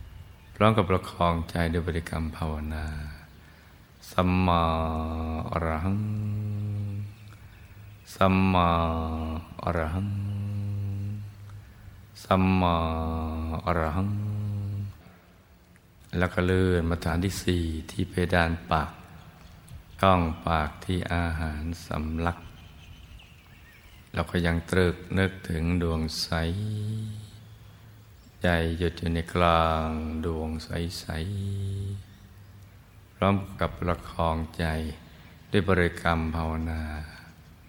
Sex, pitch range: male, 80-100 Hz